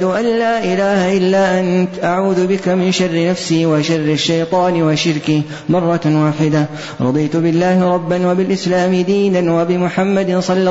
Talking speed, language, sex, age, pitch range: 125 wpm, Arabic, male, 30-49, 155-185 Hz